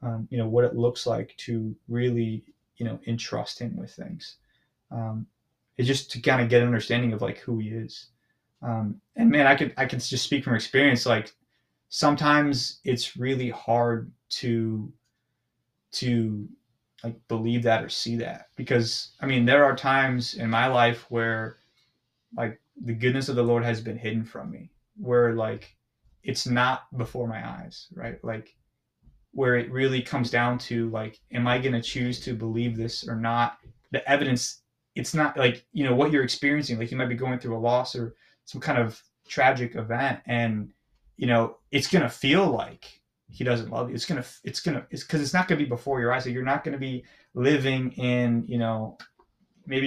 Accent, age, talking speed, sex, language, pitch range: American, 20-39, 195 wpm, male, English, 115-135 Hz